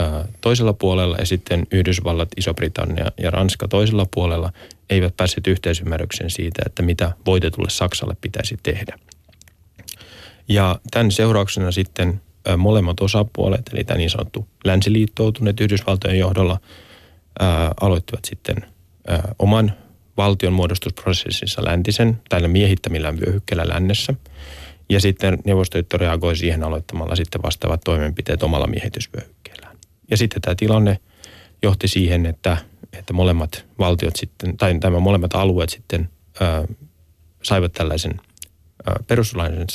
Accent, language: native, Finnish